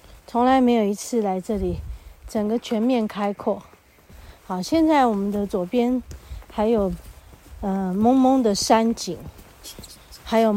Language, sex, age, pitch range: Chinese, female, 30-49, 180-230 Hz